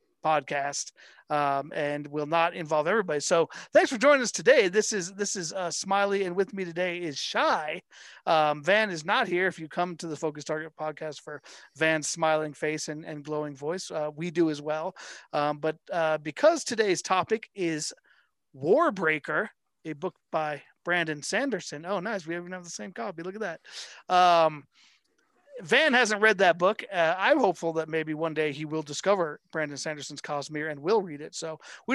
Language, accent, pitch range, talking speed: English, American, 155-195 Hz, 190 wpm